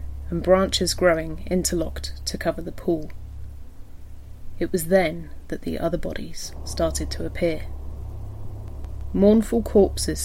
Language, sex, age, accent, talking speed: English, female, 30-49, British, 115 wpm